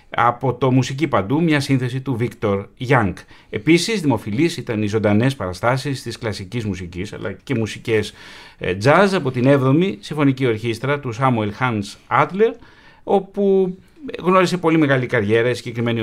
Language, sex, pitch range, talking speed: Greek, male, 110-140 Hz, 140 wpm